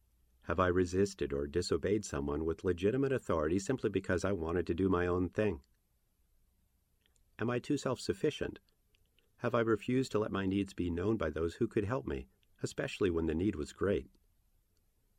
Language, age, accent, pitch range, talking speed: English, 50-69, American, 80-105 Hz, 170 wpm